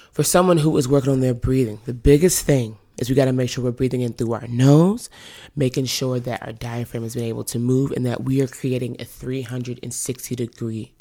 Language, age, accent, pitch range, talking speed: English, 20-39, American, 125-145 Hz, 220 wpm